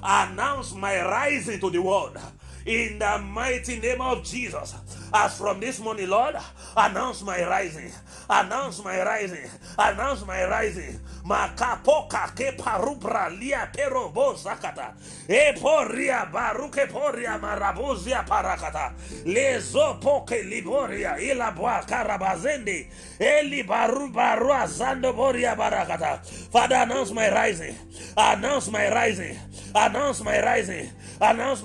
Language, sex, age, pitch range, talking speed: English, male, 30-49, 215-275 Hz, 115 wpm